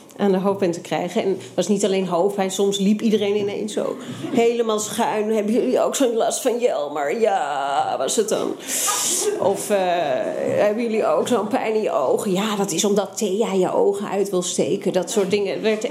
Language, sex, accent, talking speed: Dutch, female, Dutch, 215 wpm